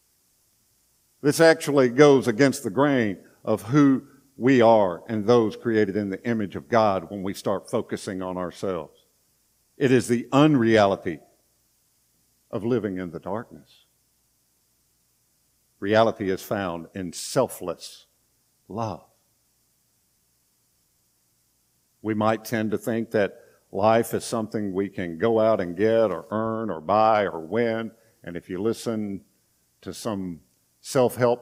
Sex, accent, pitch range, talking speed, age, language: male, American, 90-120 Hz, 130 wpm, 50-69, English